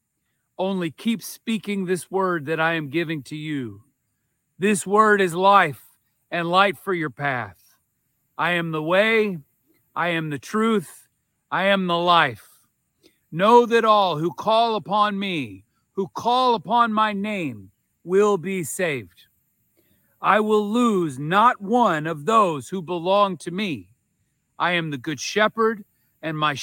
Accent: American